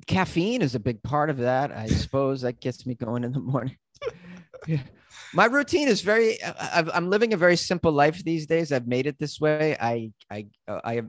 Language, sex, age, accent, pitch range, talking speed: English, male, 30-49, American, 110-135 Hz, 200 wpm